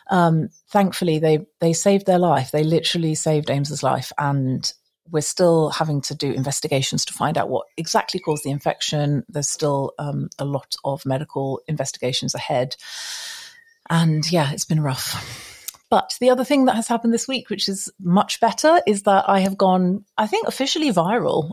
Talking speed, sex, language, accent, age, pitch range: 175 wpm, female, English, British, 40-59, 155-195 Hz